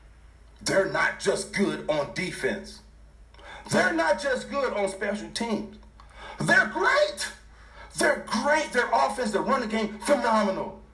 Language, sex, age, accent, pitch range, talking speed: English, male, 50-69, American, 175-290 Hz, 125 wpm